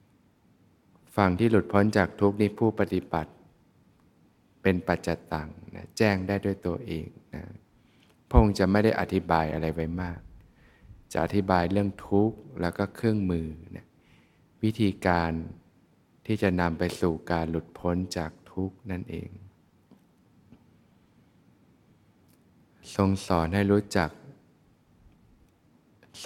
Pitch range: 85-100 Hz